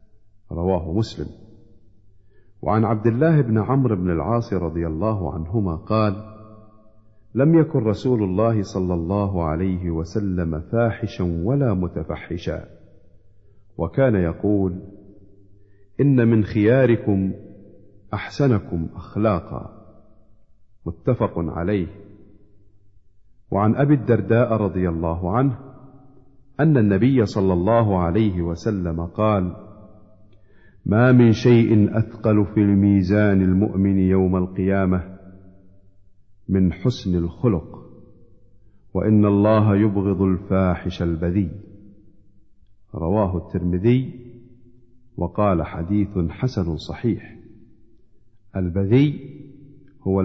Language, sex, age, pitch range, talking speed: Arabic, male, 50-69, 95-115 Hz, 85 wpm